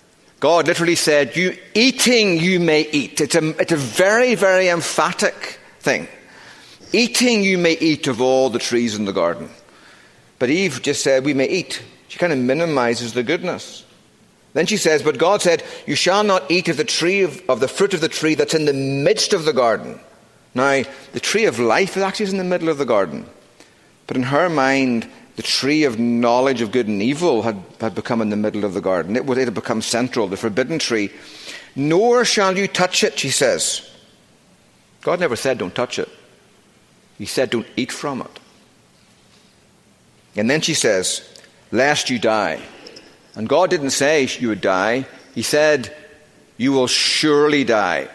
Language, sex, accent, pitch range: English, male, British, 125-175 Hz